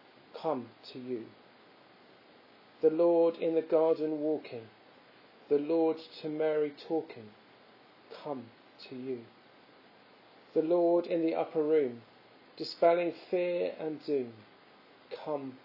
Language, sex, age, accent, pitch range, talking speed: English, male, 40-59, British, 125-160 Hz, 105 wpm